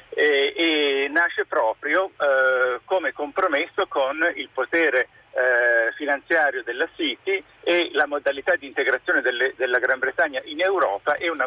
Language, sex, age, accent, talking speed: Italian, male, 50-69, native, 135 wpm